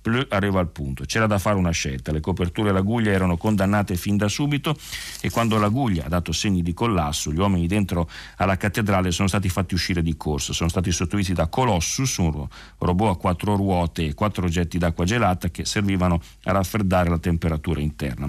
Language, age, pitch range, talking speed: Italian, 40-59, 80-105 Hz, 200 wpm